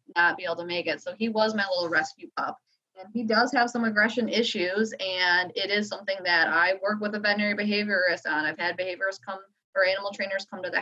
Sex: female